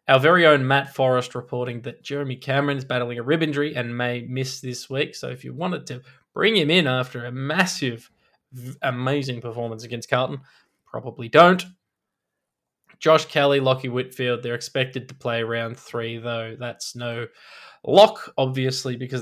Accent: Australian